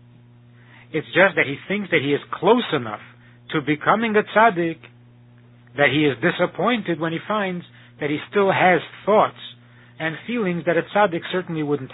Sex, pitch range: male, 120-170 Hz